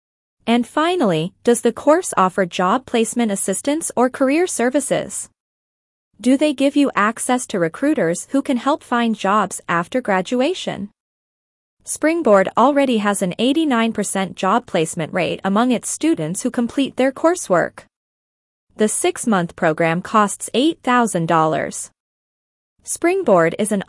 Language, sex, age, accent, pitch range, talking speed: English, female, 20-39, American, 185-270 Hz, 125 wpm